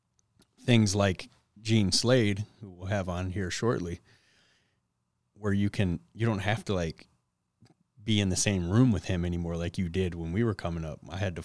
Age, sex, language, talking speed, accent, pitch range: 30-49, male, English, 190 wpm, American, 80-95 Hz